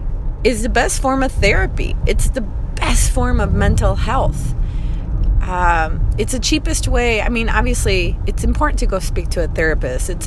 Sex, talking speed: female, 175 wpm